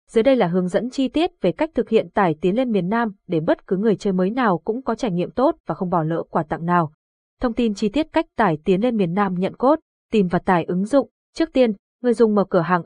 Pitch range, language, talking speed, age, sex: 180-235 Hz, Vietnamese, 275 wpm, 20-39, female